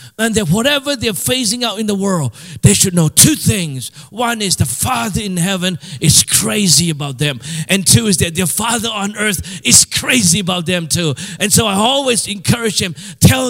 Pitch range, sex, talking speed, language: 135-200 Hz, male, 195 wpm, English